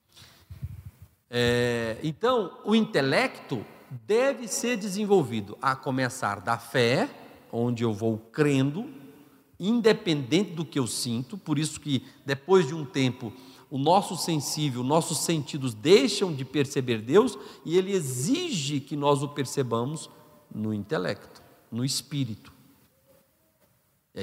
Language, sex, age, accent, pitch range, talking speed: Portuguese, male, 50-69, Brazilian, 135-215 Hz, 115 wpm